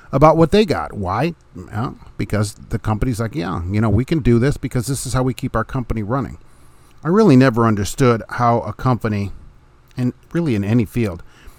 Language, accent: English, American